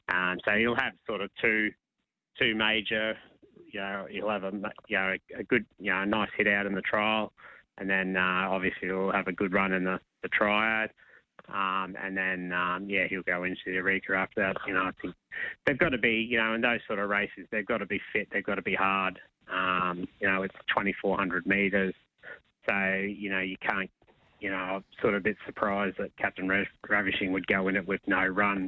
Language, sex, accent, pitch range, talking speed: English, male, Australian, 95-105 Hz, 225 wpm